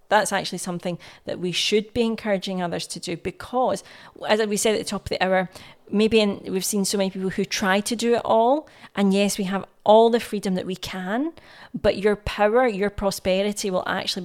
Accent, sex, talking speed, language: British, female, 210 wpm, English